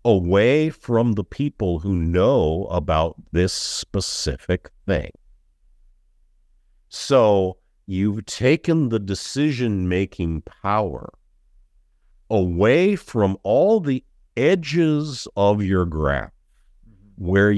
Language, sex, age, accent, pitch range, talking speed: English, male, 50-69, American, 75-110 Hz, 85 wpm